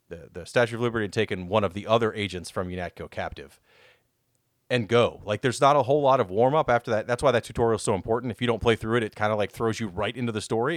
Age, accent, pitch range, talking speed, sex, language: 40-59, American, 105-140 Hz, 280 wpm, male, English